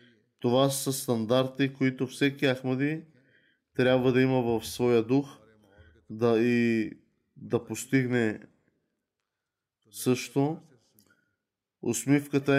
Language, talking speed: Bulgarian, 85 wpm